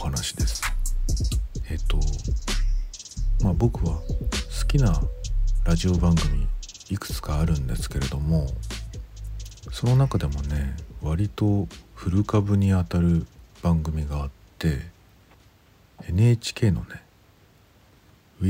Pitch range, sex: 80-105 Hz, male